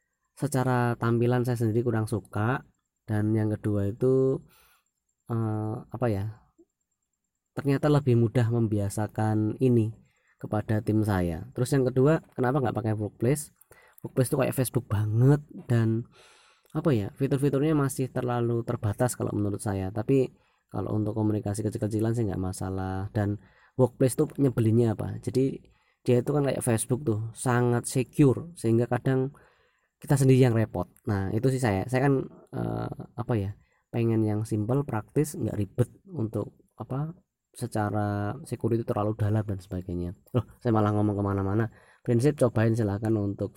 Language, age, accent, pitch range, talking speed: English, 20-39, Indonesian, 105-125 Hz, 140 wpm